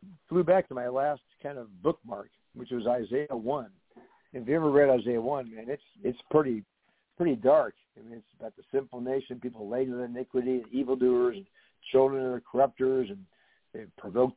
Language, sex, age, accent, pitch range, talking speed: English, male, 60-79, American, 115-135 Hz, 185 wpm